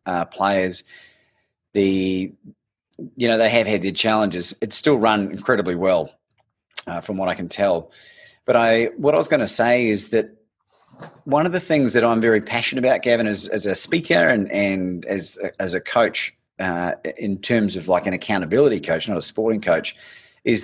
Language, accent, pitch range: English, Australian, 95-120 Hz